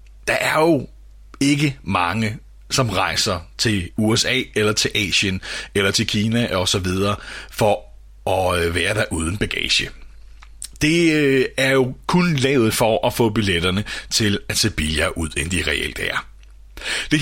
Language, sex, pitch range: Danish, male, 90-135 Hz